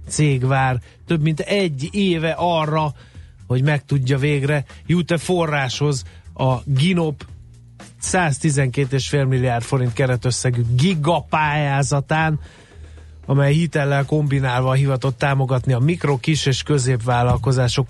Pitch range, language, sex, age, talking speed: 125-150 Hz, Hungarian, male, 30-49, 105 wpm